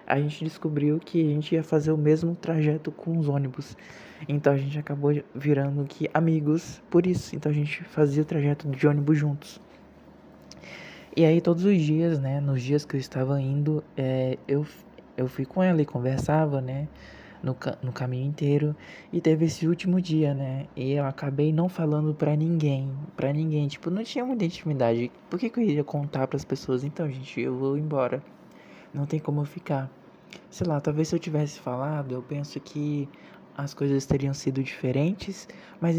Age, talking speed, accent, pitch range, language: 20-39, 185 wpm, Brazilian, 140-160 Hz, Portuguese